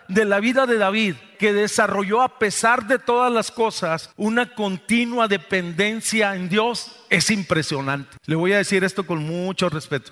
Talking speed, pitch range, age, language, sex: 165 wpm, 160-210 Hz, 40-59, Spanish, male